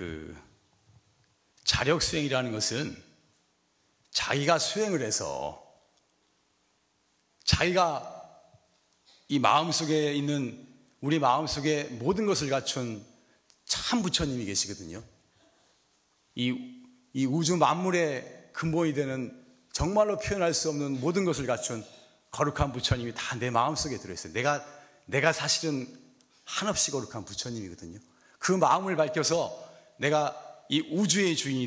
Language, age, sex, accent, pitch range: Korean, 40-59, male, native, 105-155 Hz